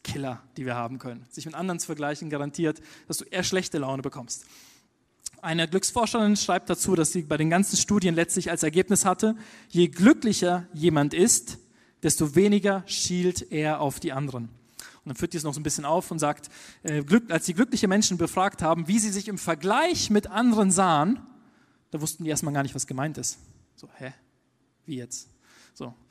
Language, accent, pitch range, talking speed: German, German, 145-190 Hz, 190 wpm